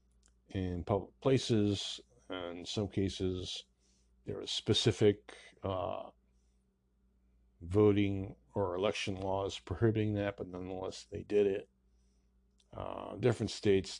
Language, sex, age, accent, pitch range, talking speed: English, male, 50-69, American, 65-100 Hz, 105 wpm